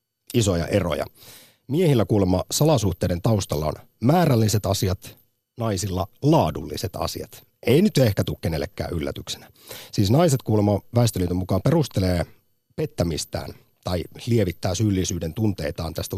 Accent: native